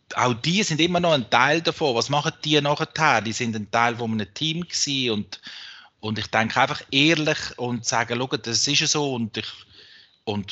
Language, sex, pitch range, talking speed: German, male, 110-145 Hz, 200 wpm